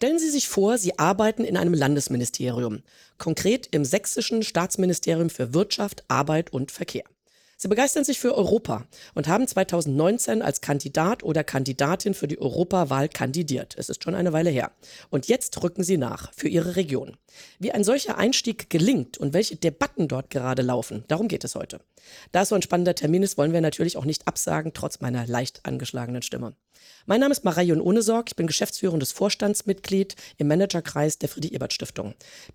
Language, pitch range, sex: German, 145-210 Hz, female